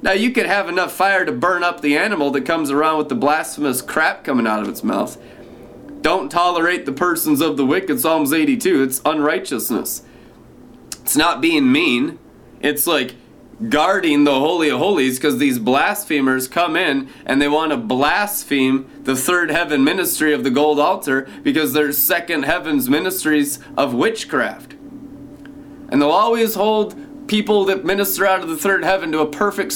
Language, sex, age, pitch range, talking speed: English, male, 30-49, 135-205 Hz, 170 wpm